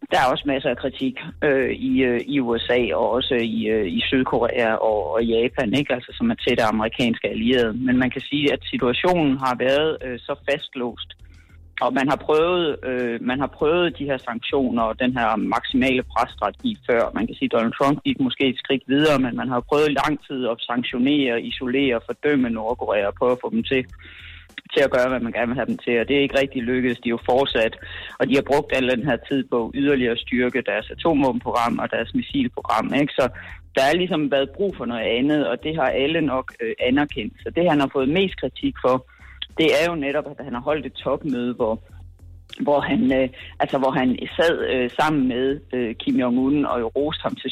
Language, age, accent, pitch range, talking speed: Danish, 30-49, native, 125-145 Hz, 215 wpm